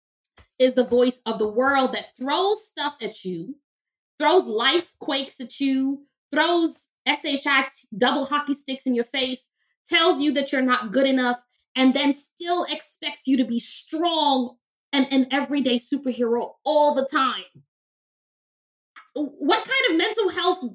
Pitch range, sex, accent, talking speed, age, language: 250-320 Hz, female, American, 150 wpm, 20-39, English